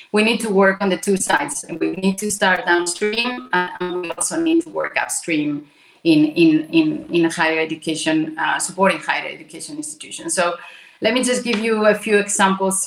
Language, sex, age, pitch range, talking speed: English, female, 30-49, 165-200 Hz, 190 wpm